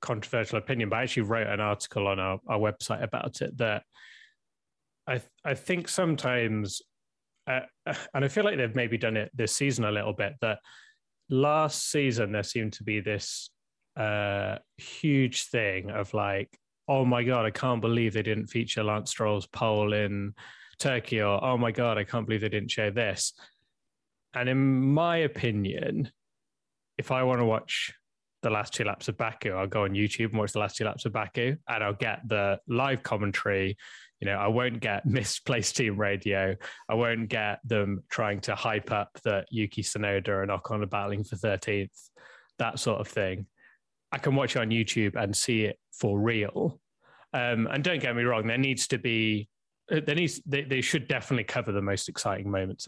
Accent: British